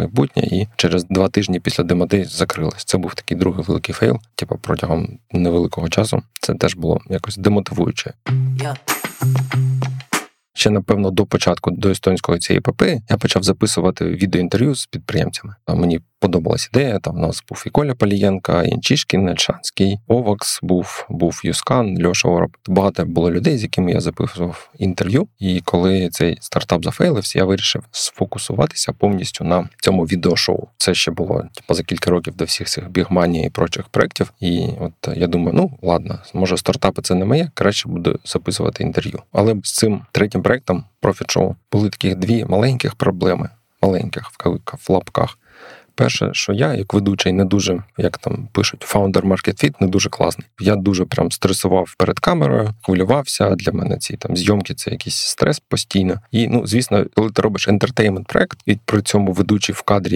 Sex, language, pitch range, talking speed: male, Ukrainian, 90-110 Hz, 165 wpm